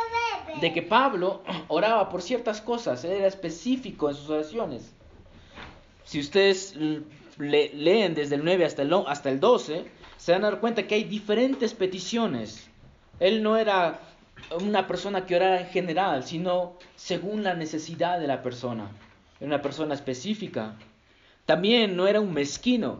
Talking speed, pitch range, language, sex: 145 wpm, 150-210 Hz, Spanish, male